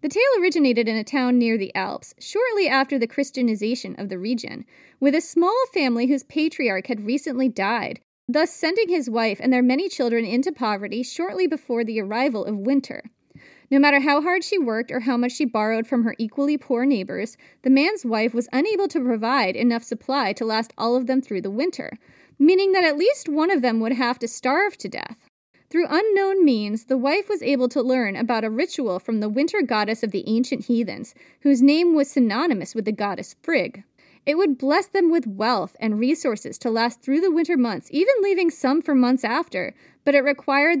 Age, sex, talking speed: 30-49, female, 205 wpm